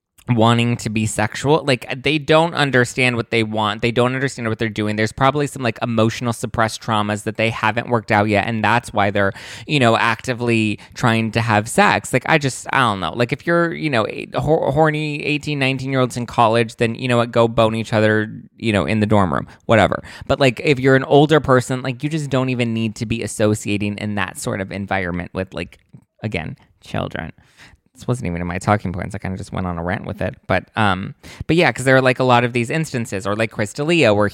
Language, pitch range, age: English, 105-135 Hz, 20-39